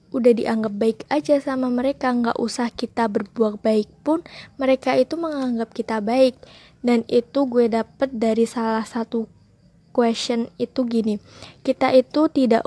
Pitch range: 225-255 Hz